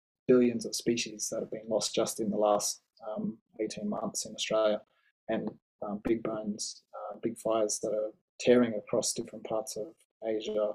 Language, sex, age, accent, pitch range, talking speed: English, male, 20-39, Australian, 110-125 Hz, 165 wpm